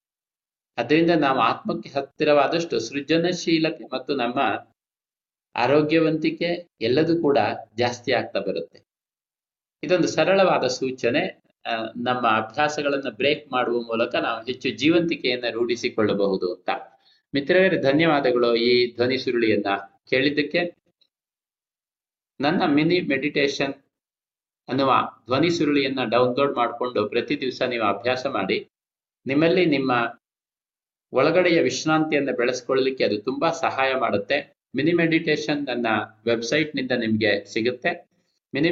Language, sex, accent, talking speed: Kannada, male, native, 95 wpm